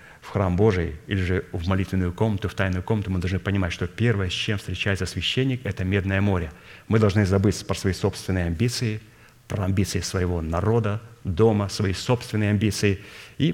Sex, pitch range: male, 100-120 Hz